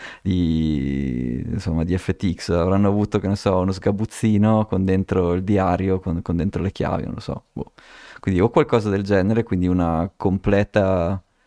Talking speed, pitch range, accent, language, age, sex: 165 wpm, 90-110 Hz, native, Italian, 20-39, male